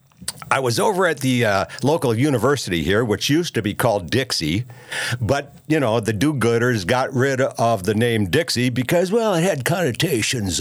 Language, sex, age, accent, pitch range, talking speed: English, male, 60-79, American, 100-130 Hz, 175 wpm